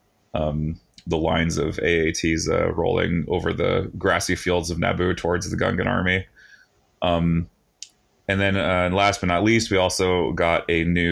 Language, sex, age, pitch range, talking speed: English, male, 30-49, 80-90 Hz, 165 wpm